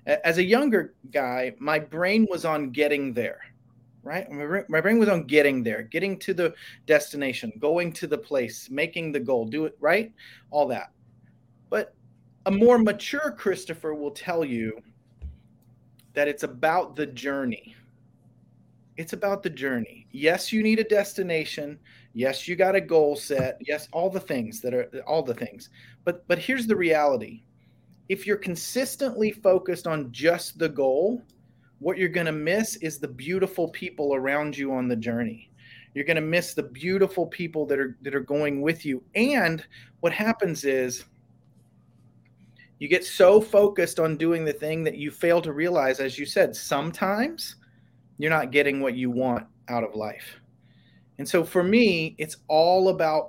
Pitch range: 135-185 Hz